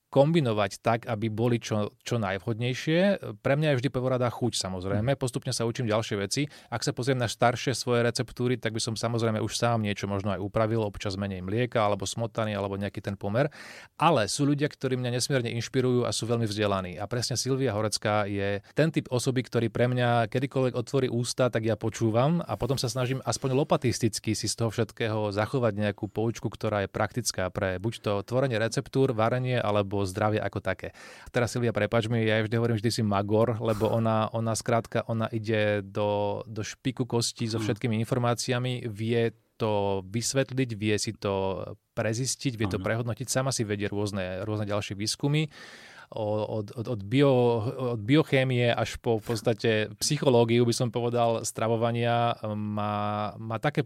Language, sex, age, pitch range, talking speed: Slovak, male, 30-49, 105-125 Hz, 175 wpm